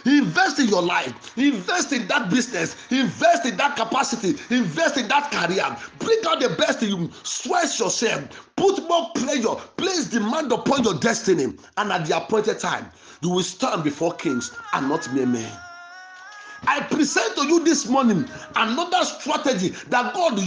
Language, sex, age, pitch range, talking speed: English, male, 50-69, 210-290 Hz, 165 wpm